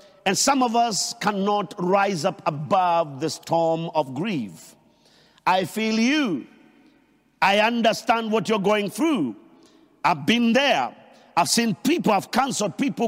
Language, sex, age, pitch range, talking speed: English, male, 50-69, 170-220 Hz, 140 wpm